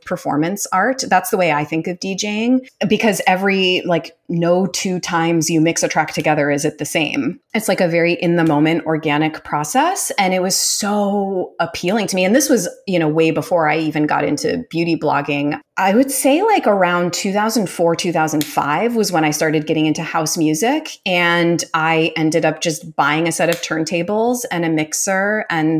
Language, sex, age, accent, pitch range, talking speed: English, female, 30-49, American, 155-190 Hz, 185 wpm